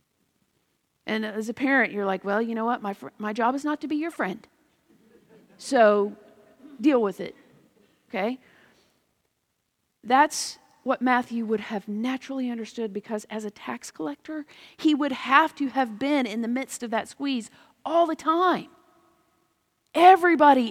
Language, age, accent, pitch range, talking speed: English, 40-59, American, 215-280 Hz, 150 wpm